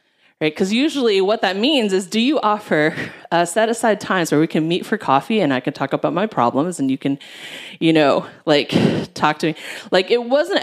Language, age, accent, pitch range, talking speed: English, 30-49, American, 155-220 Hz, 215 wpm